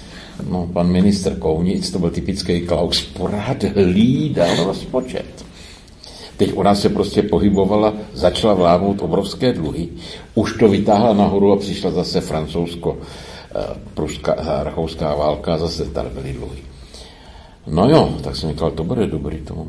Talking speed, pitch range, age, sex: 130 wpm, 70-90 Hz, 60-79, male